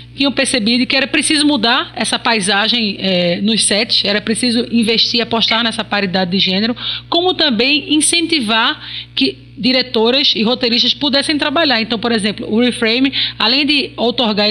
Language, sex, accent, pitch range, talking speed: Portuguese, female, Brazilian, 205-255 Hz, 150 wpm